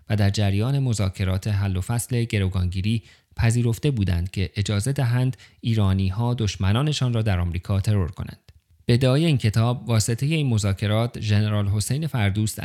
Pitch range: 100-120 Hz